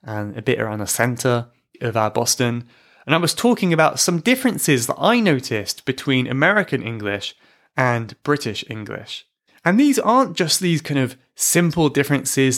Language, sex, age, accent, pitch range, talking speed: English, male, 20-39, British, 115-170 Hz, 160 wpm